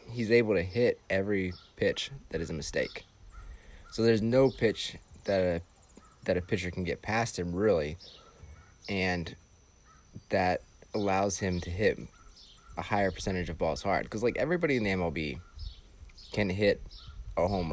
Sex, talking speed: male, 155 wpm